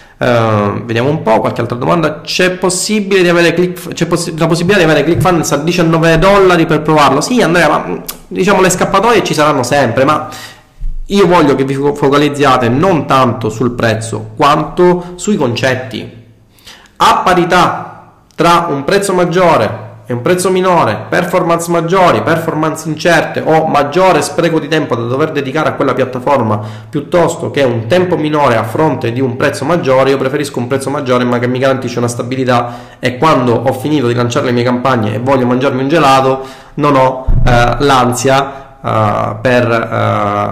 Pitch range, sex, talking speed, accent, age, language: 120-160 Hz, male, 165 wpm, native, 30-49, Italian